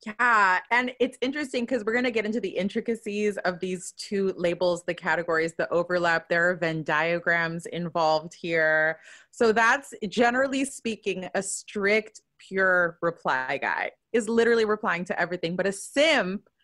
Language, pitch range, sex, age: English, 170-220 Hz, female, 20-39